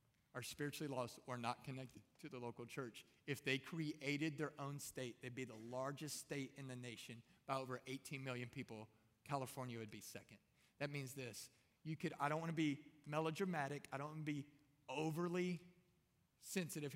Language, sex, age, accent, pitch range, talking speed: English, male, 30-49, American, 120-145 Hz, 180 wpm